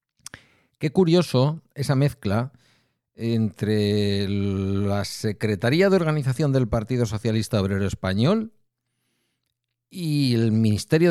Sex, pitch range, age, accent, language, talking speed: male, 100-135 Hz, 50-69, Spanish, Spanish, 90 wpm